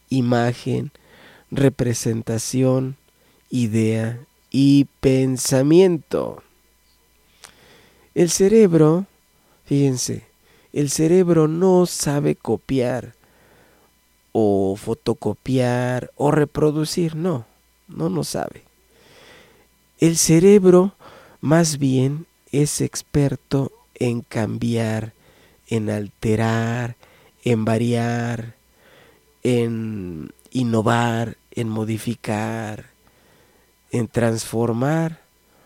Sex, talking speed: male, 65 wpm